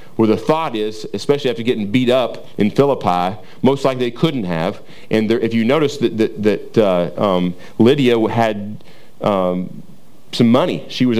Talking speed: 180 wpm